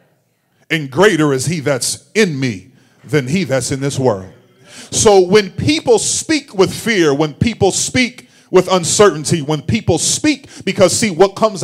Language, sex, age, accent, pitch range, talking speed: English, male, 40-59, American, 135-195 Hz, 160 wpm